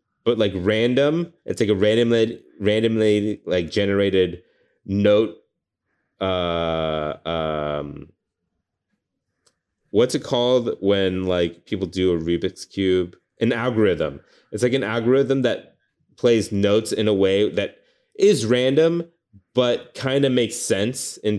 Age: 30-49